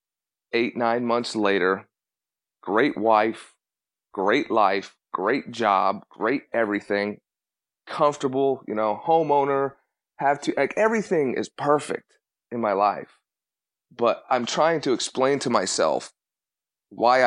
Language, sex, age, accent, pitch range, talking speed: English, male, 30-49, American, 110-125 Hz, 115 wpm